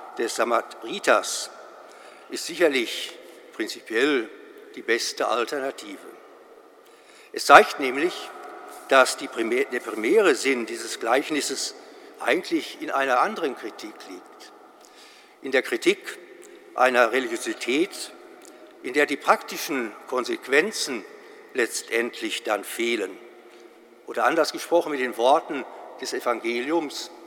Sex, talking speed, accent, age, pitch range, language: male, 95 wpm, German, 60-79, 360-415 Hz, German